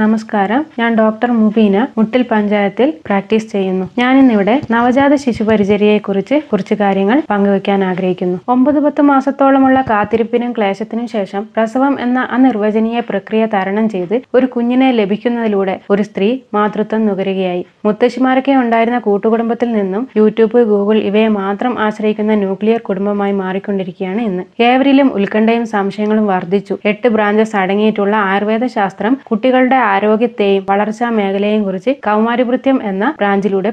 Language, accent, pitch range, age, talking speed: Malayalam, native, 200-245 Hz, 20-39, 115 wpm